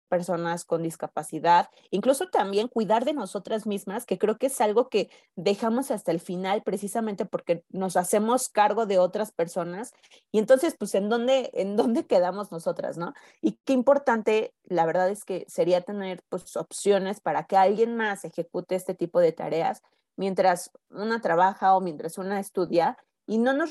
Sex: female